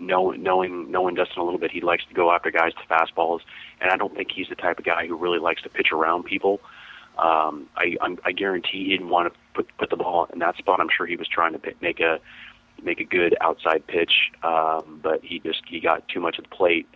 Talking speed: 250 wpm